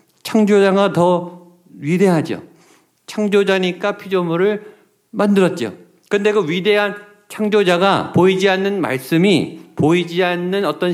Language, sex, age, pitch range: Korean, male, 50-69, 155-195 Hz